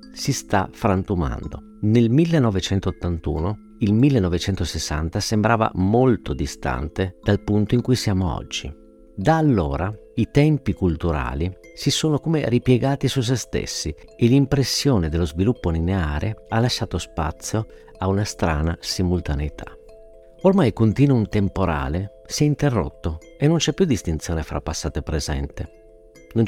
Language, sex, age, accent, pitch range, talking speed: Italian, male, 50-69, native, 85-120 Hz, 130 wpm